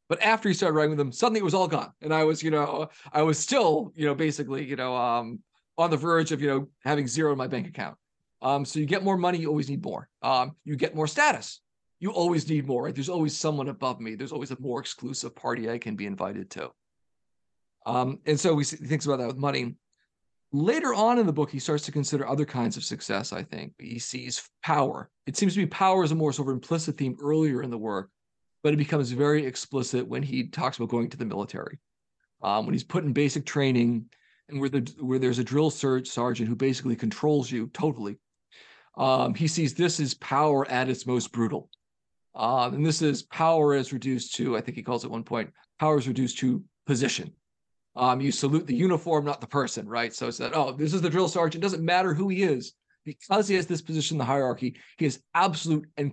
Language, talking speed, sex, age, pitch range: English, 230 wpm, male, 40-59, 125-155 Hz